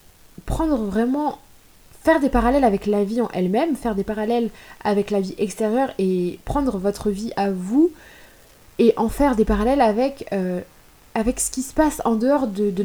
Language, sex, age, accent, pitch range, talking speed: French, female, 20-39, French, 205-270 Hz, 175 wpm